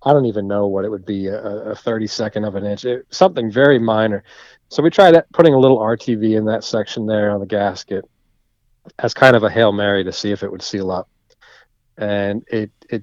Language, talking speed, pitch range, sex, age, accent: English, 225 wpm, 105-125 Hz, male, 40-59, American